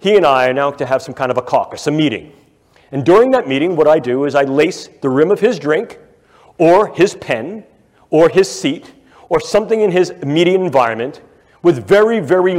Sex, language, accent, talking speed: male, English, American, 210 wpm